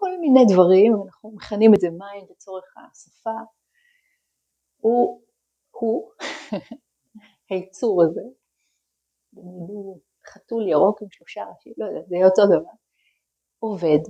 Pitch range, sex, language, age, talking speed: 180-230 Hz, female, Hebrew, 30-49, 115 wpm